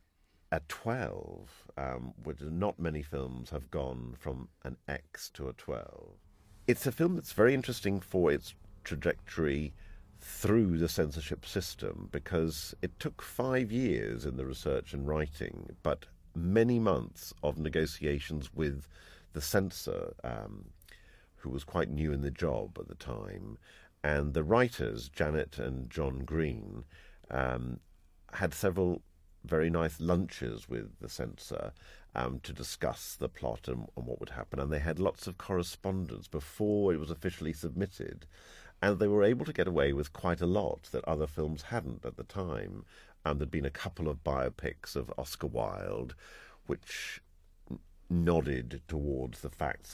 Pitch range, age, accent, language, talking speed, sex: 70-90 Hz, 50-69, British, English, 155 wpm, male